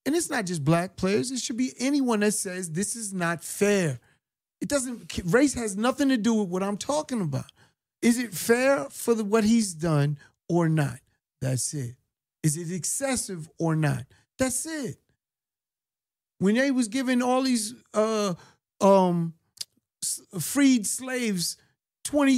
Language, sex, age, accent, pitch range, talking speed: English, male, 40-59, American, 155-230 Hz, 155 wpm